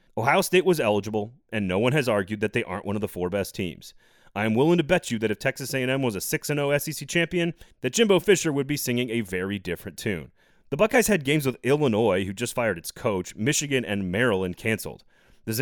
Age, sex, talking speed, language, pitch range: 30-49, male, 225 wpm, English, 105-145 Hz